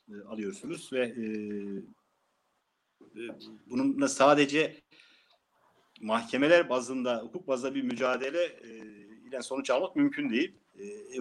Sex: male